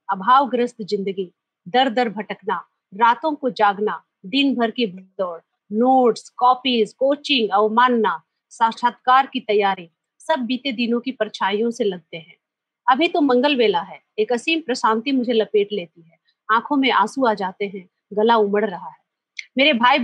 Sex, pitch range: female, 215-275 Hz